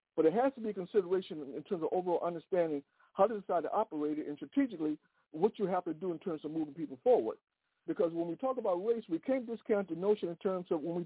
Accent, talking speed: American, 255 wpm